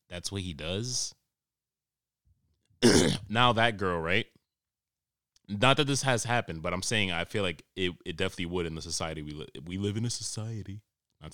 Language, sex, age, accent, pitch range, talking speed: English, male, 20-39, American, 85-115 Hz, 180 wpm